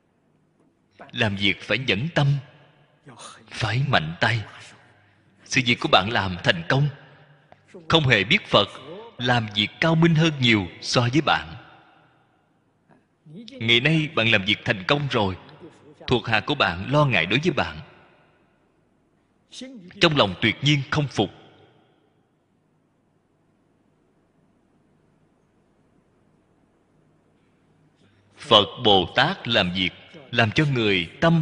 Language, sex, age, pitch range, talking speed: Vietnamese, male, 30-49, 110-150 Hz, 115 wpm